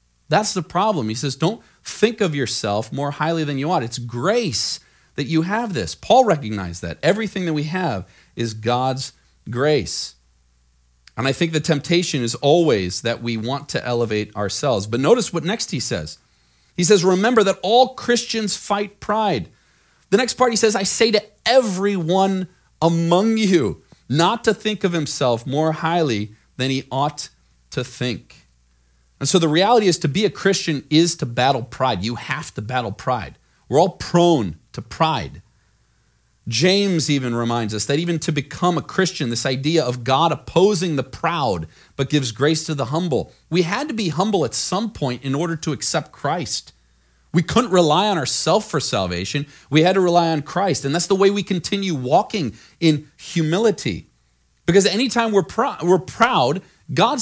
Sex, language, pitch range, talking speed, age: male, English, 120-190 Hz, 175 wpm, 40-59